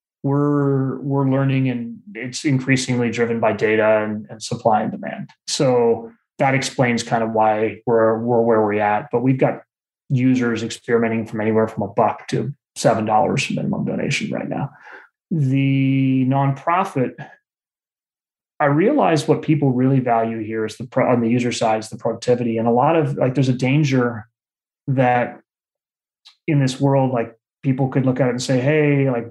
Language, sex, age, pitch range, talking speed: English, male, 30-49, 115-140 Hz, 170 wpm